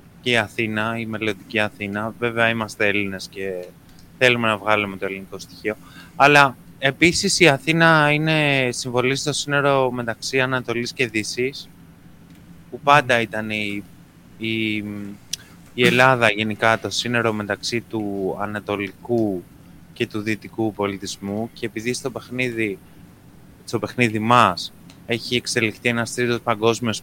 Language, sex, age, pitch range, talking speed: Greek, male, 20-39, 105-140 Hz, 125 wpm